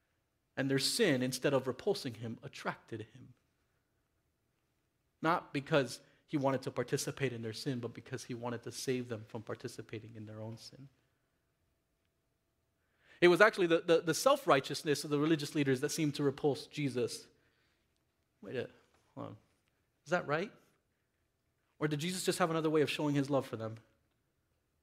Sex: male